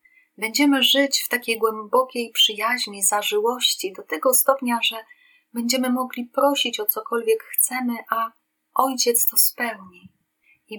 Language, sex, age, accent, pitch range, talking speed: Polish, female, 30-49, native, 215-265 Hz, 120 wpm